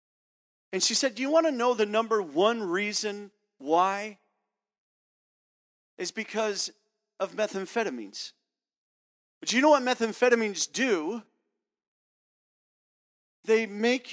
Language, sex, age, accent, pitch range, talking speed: English, male, 40-59, American, 160-230 Hz, 105 wpm